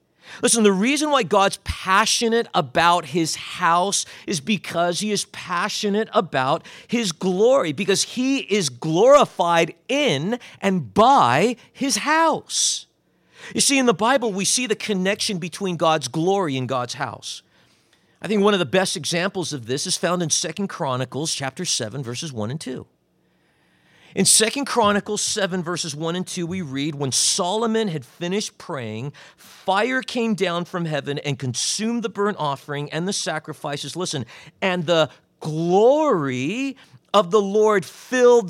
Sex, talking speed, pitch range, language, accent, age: male, 150 wpm, 165-225 Hz, English, American, 50-69